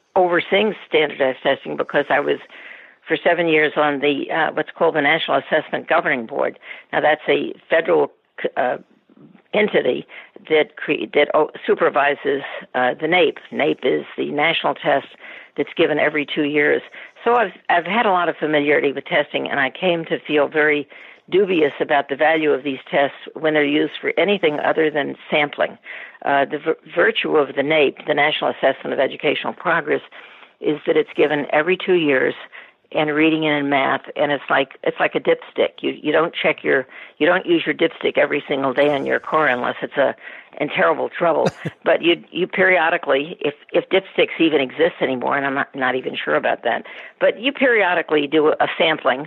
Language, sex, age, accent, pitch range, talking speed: English, female, 60-79, American, 145-185 Hz, 185 wpm